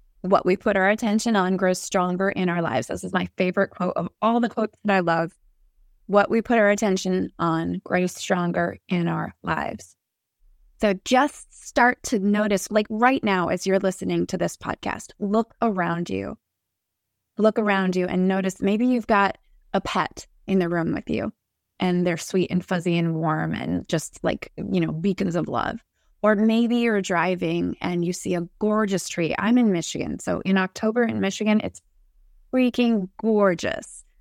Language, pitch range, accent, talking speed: English, 180-235 Hz, American, 180 wpm